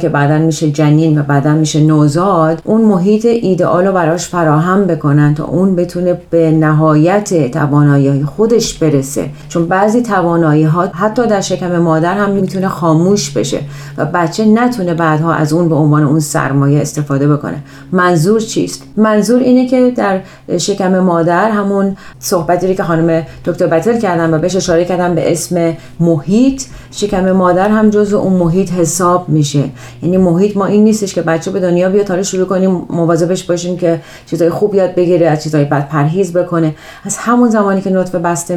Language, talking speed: Persian, 170 wpm